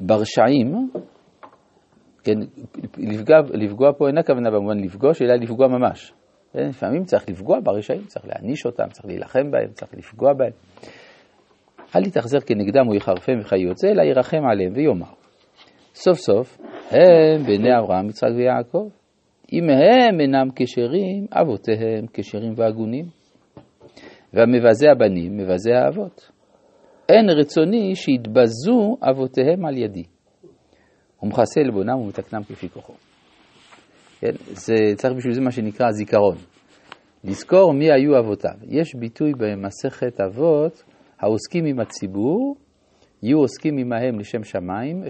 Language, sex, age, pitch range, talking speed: Hebrew, male, 50-69, 105-150 Hz, 115 wpm